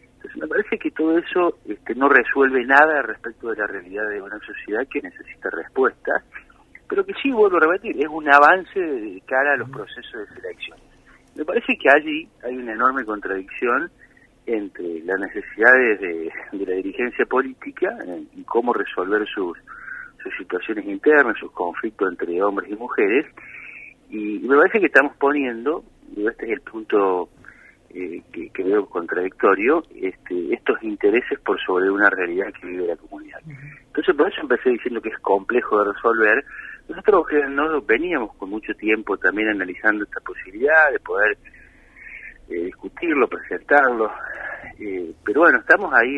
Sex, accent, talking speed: male, Argentinian, 155 wpm